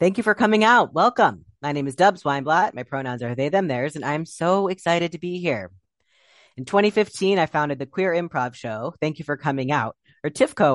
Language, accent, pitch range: English, American, 130-175 Hz